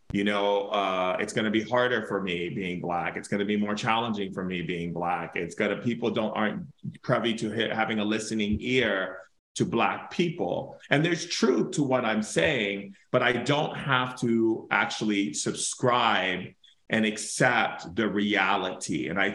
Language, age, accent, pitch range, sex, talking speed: English, 30-49, American, 100-125 Hz, male, 175 wpm